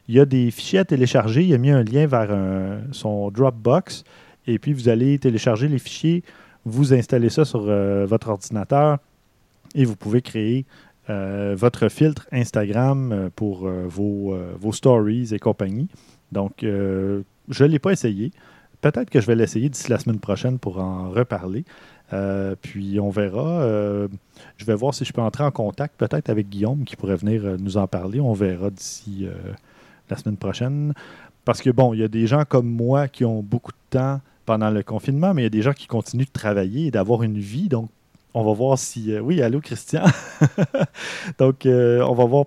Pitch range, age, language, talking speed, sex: 105-140 Hz, 30-49, French, 195 wpm, male